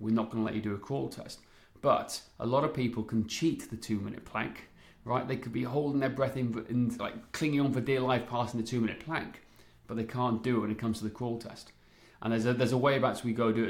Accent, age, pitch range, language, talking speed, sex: British, 30-49, 110-130 Hz, English, 270 wpm, male